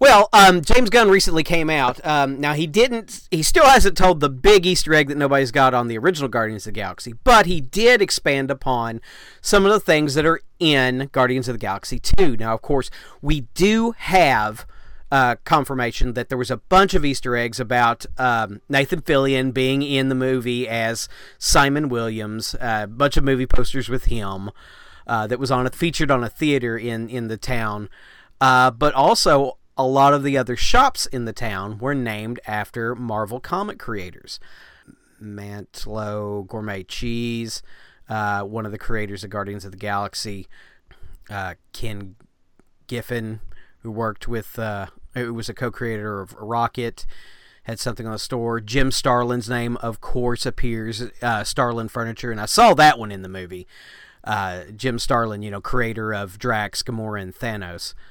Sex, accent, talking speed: male, American, 175 wpm